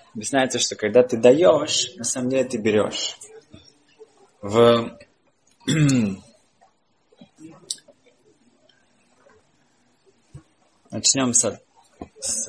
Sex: male